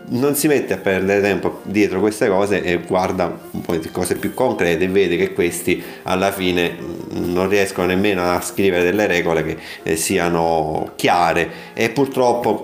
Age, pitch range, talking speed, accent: 30-49, 90-110 Hz, 170 wpm, native